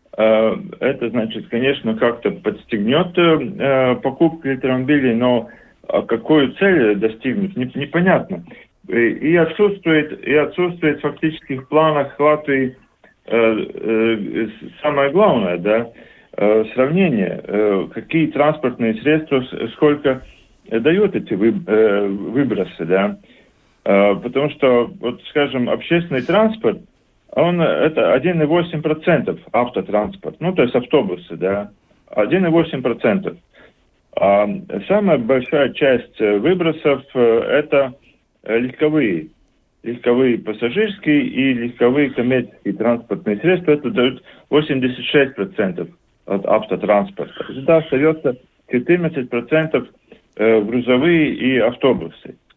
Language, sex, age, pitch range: Russian, male, 40-59, 115-155 Hz